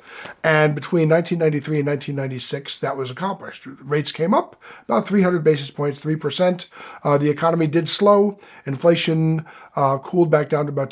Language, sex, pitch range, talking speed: English, male, 135-160 Hz, 160 wpm